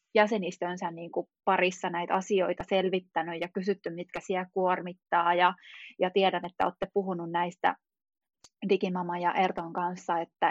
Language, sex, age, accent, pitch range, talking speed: Finnish, female, 20-39, native, 180-205 Hz, 135 wpm